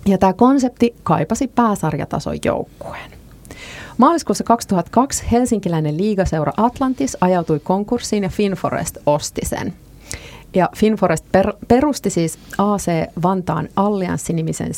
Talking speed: 95 wpm